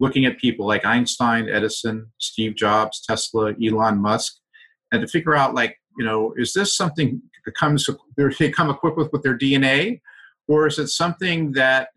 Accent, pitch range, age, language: American, 110-150 Hz, 50-69, English